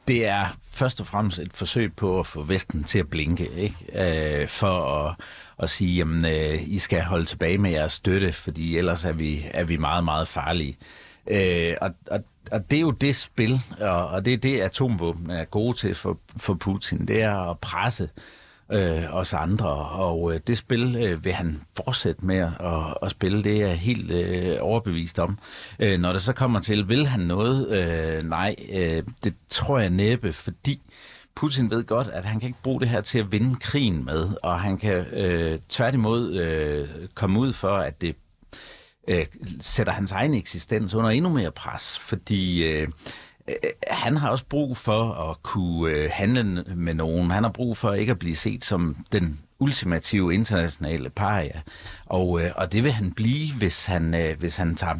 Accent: native